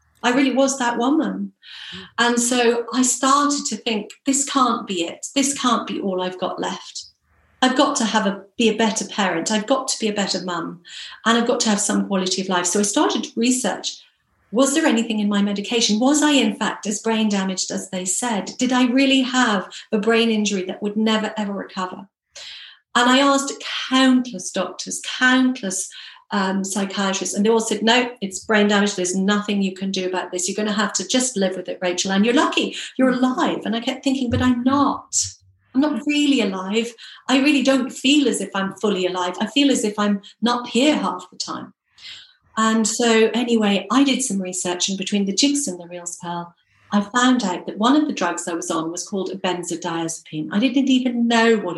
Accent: British